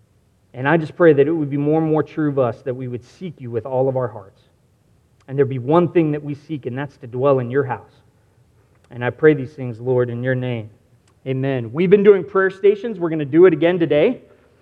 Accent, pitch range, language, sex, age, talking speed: American, 140-210 Hz, English, male, 30-49, 255 wpm